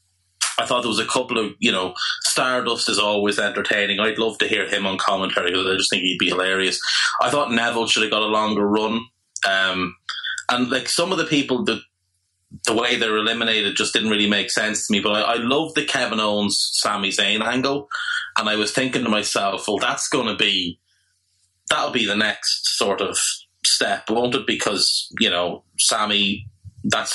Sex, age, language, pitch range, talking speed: male, 30-49, English, 95-115 Hz, 200 wpm